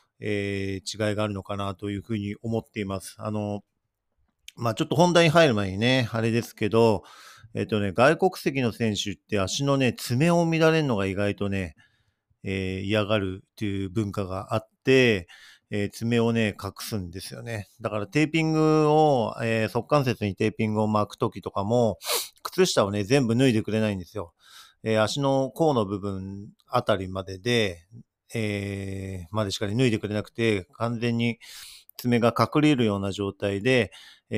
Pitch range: 100-120 Hz